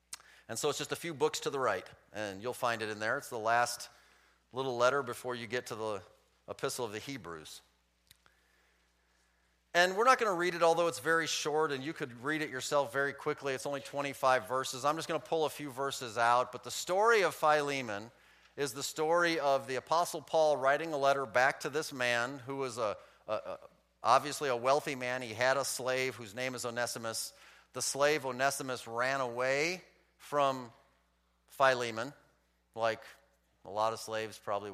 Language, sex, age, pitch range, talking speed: English, male, 40-59, 115-150 Hz, 185 wpm